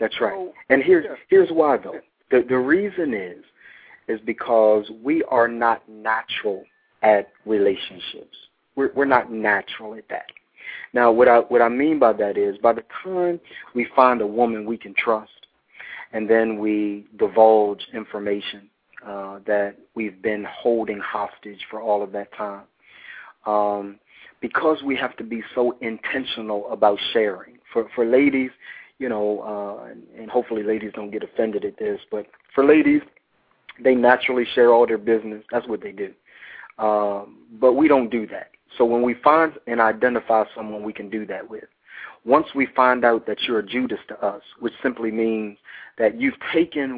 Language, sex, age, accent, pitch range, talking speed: English, male, 40-59, American, 105-125 Hz, 170 wpm